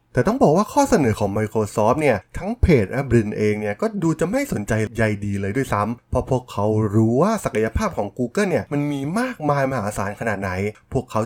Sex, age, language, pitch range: male, 20-39, Thai, 110-170 Hz